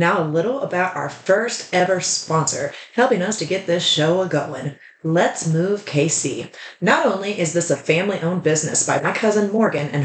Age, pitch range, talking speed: 30-49, 145-190 Hz, 190 wpm